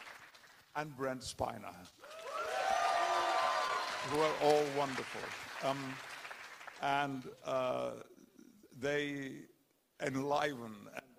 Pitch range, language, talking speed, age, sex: 125-165 Hz, Italian, 70 wpm, 60-79, male